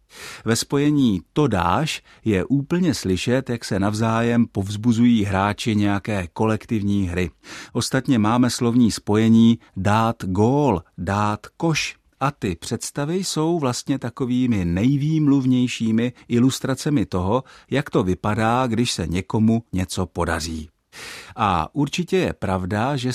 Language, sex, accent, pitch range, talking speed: Czech, male, native, 95-125 Hz, 115 wpm